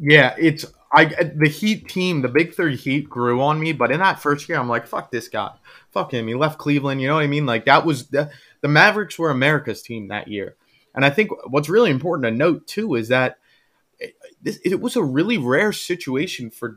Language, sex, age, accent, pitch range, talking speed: English, male, 20-39, American, 125-165 Hz, 225 wpm